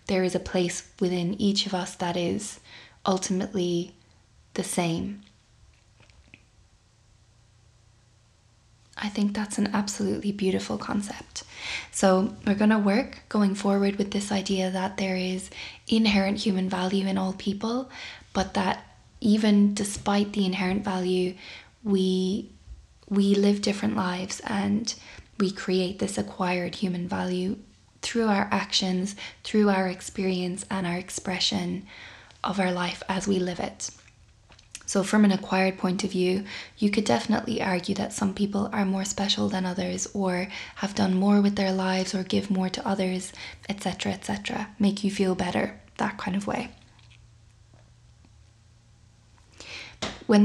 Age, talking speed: 20-39, 140 wpm